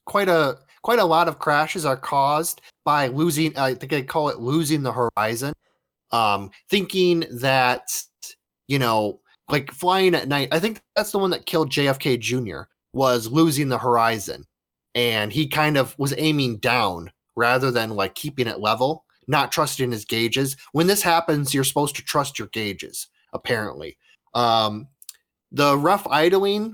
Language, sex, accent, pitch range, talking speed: English, male, American, 120-155 Hz, 160 wpm